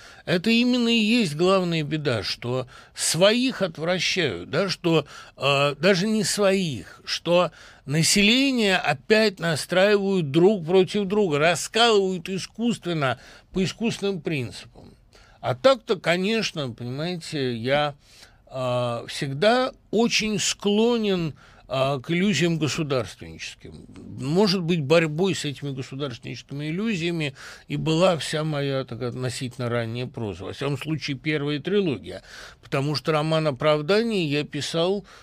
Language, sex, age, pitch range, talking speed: Russian, male, 60-79, 125-190 Hz, 110 wpm